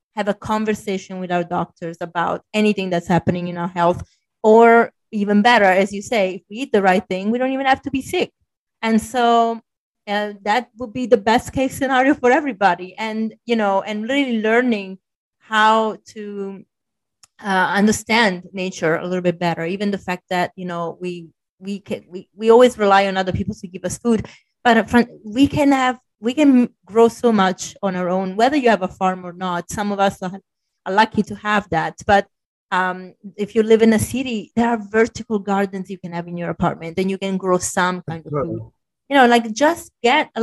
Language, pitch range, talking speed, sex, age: English, 190-235 Hz, 205 wpm, female, 30-49